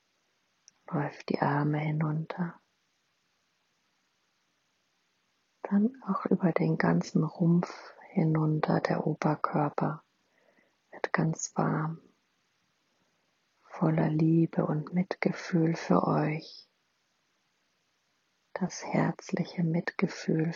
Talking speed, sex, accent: 75 wpm, female, German